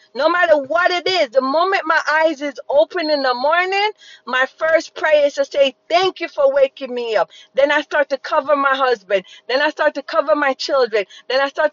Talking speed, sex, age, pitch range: 220 wpm, female, 40-59, 275-330 Hz